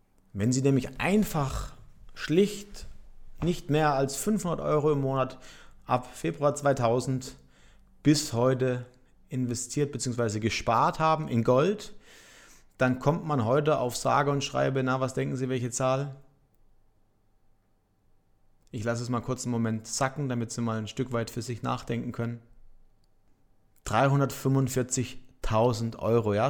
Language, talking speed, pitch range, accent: German, 130 wpm, 115-140 Hz, German